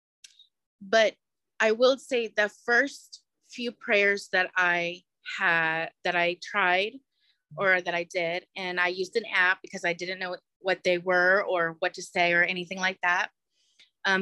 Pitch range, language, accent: 180-205 Hz, English, American